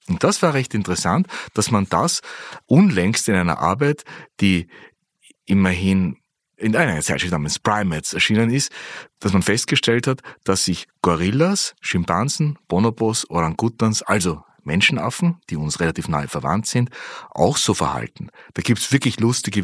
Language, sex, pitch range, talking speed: German, male, 95-135 Hz, 145 wpm